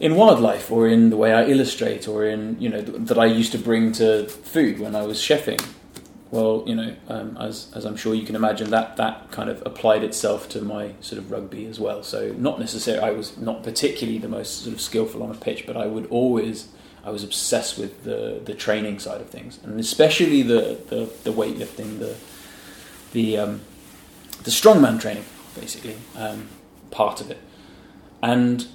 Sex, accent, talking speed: male, British, 200 wpm